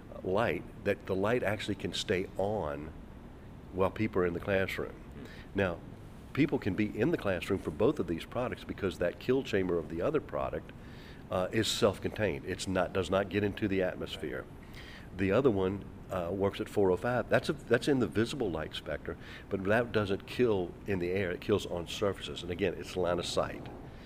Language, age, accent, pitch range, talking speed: English, 50-69, American, 95-110 Hz, 195 wpm